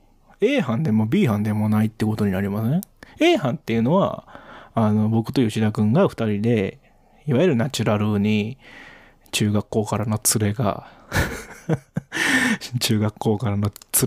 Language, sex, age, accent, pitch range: Japanese, male, 20-39, native, 110-165 Hz